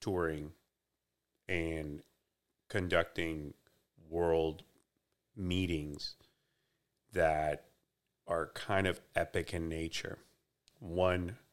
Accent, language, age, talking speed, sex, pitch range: American, English, 40-59, 70 wpm, male, 80-95 Hz